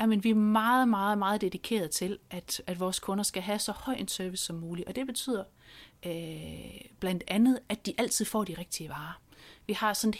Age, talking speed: 30-49, 220 wpm